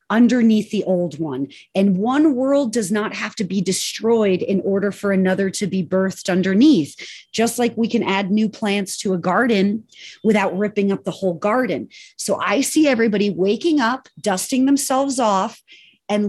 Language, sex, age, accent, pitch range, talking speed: English, female, 30-49, American, 195-255 Hz, 175 wpm